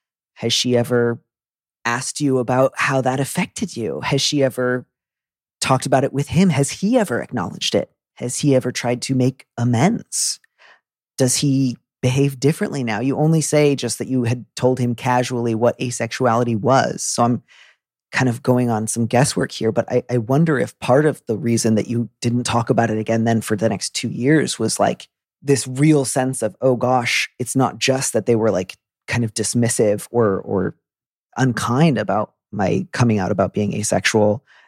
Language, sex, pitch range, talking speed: English, male, 110-130 Hz, 185 wpm